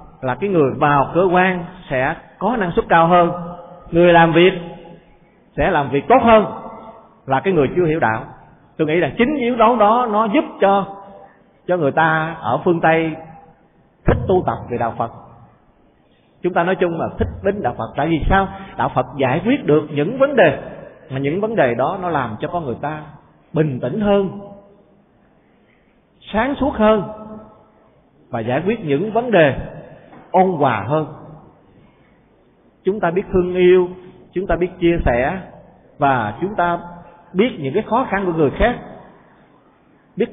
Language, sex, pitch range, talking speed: Vietnamese, male, 140-195 Hz, 175 wpm